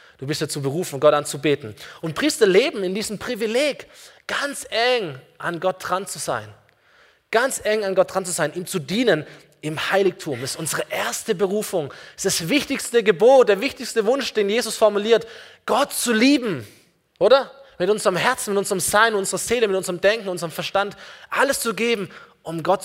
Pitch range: 155-225 Hz